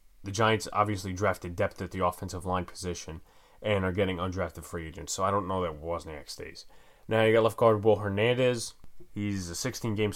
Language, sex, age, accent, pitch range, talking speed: English, male, 20-39, American, 95-115 Hz, 205 wpm